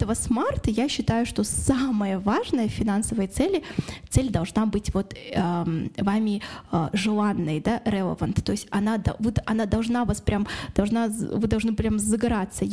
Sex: female